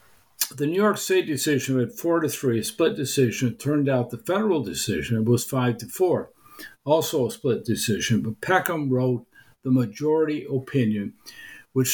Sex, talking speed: male, 160 wpm